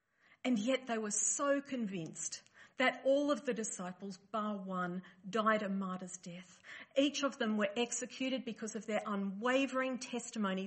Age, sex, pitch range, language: 50-69, female, 190-250 Hz, English